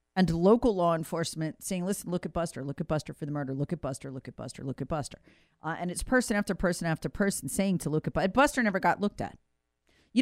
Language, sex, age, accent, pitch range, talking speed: English, female, 40-59, American, 140-210 Hz, 255 wpm